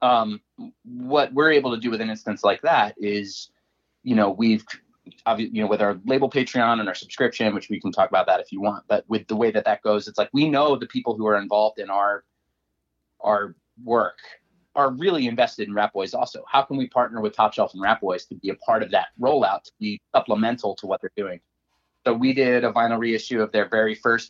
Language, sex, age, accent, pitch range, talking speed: English, male, 30-49, American, 105-125 Hz, 230 wpm